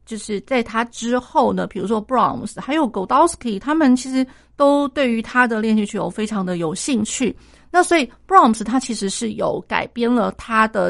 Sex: female